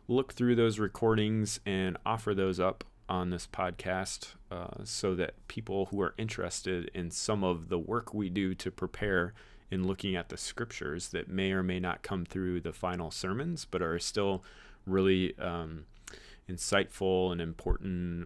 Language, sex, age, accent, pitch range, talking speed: English, male, 30-49, American, 90-100 Hz, 165 wpm